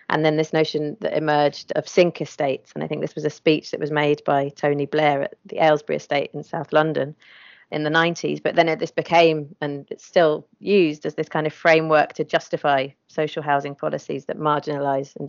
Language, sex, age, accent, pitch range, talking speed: English, female, 30-49, British, 145-165 Hz, 210 wpm